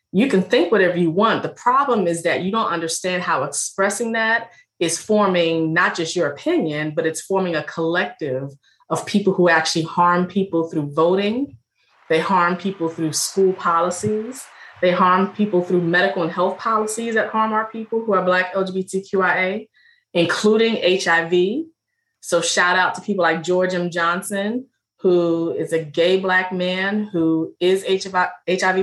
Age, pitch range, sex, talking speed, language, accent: 20-39, 170-200 Hz, female, 160 wpm, English, American